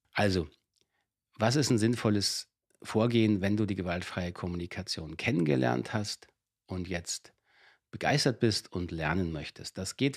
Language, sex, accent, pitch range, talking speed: German, male, German, 95-120 Hz, 130 wpm